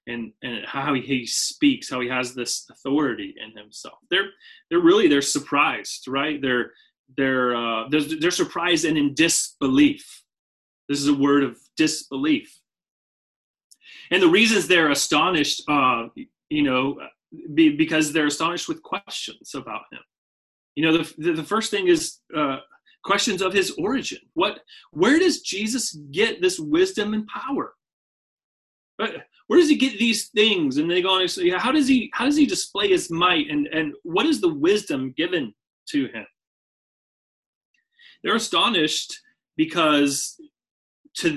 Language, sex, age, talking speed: English, male, 30-49, 150 wpm